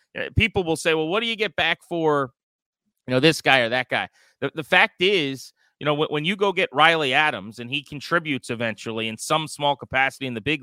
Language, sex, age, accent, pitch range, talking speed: English, male, 30-49, American, 120-160 Hz, 230 wpm